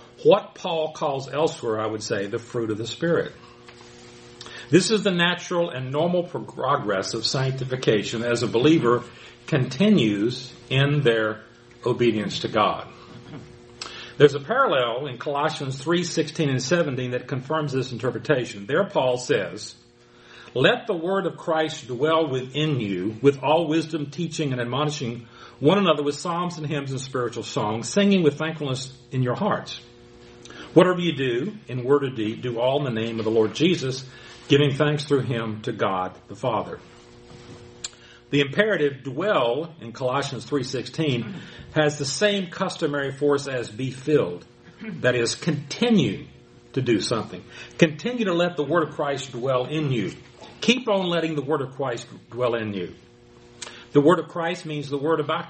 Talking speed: 160 wpm